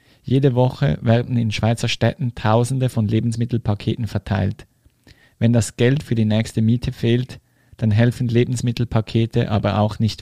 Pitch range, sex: 105-120 Hz, male